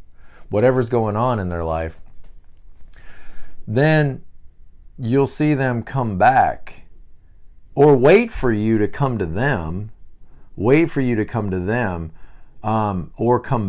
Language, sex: English, male